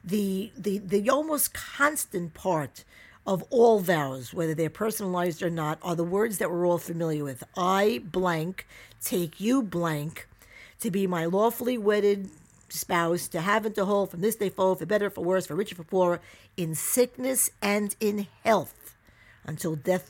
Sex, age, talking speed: female, 50-69, 170 wpm